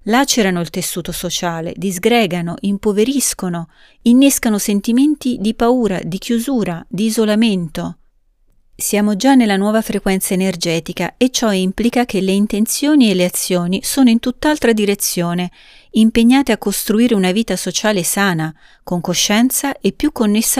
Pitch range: 180-230 Hz